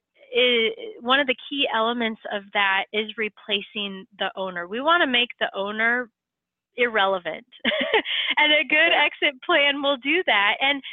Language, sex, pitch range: English, female, 205-275 Hz